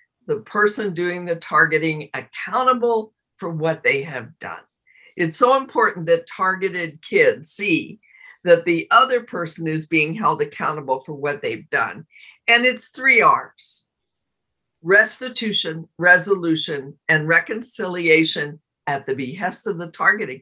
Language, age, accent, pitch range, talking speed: English, 50-69, American, 160-240 Hz, 130 wpm